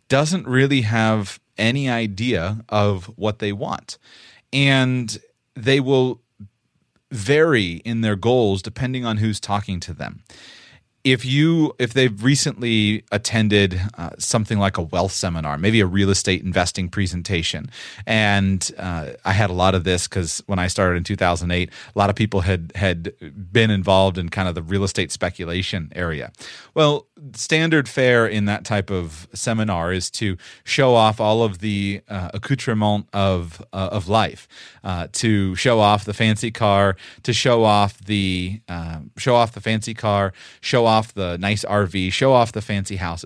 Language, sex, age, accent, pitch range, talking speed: English, male, 30-49, American, 95-120 Hz, 165 wpm